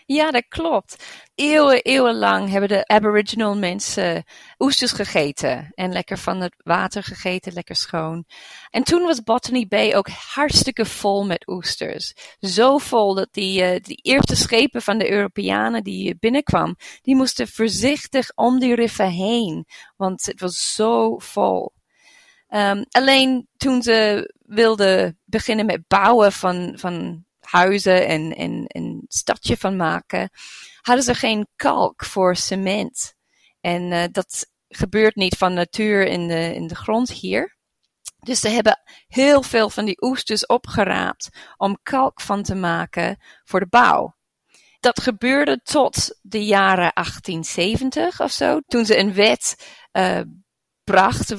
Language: Dutch